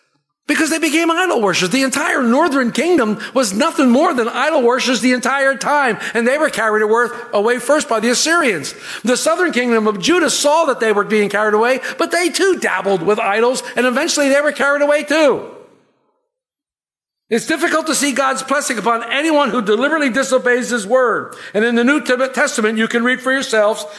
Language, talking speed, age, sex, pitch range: English, 190 wpm, 60-79, male, 225-290 Hz